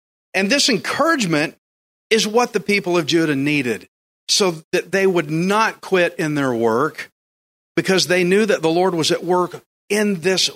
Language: English